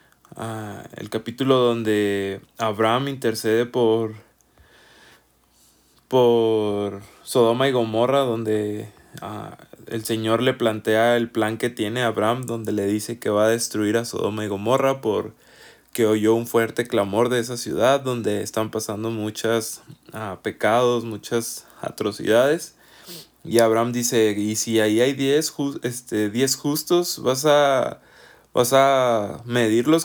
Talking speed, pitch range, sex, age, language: 130 wpm, 110-130 Hz, male, 20-39, Spanish